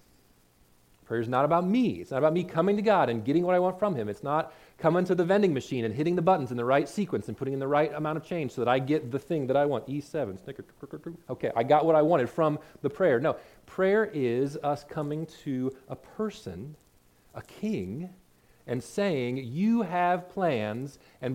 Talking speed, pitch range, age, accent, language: 220 wpm, 110-160 Hz, 40-59, American, English